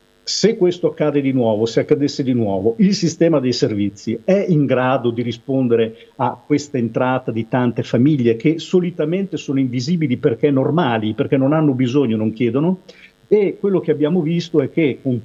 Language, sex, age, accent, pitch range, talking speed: Italian, male, 50-69, native, 120-155 Hz, 175 wpm